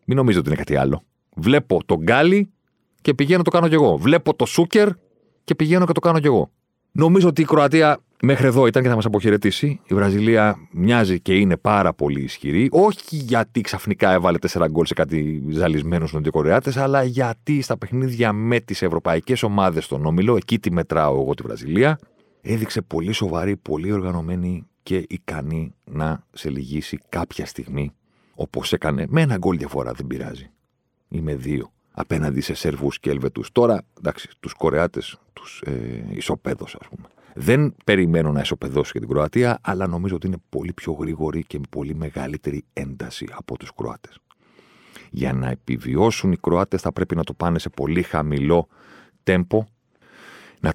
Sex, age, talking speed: male, 40-59, 170 wpm